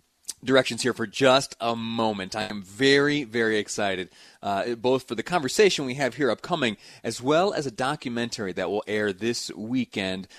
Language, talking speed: English, 175 wpm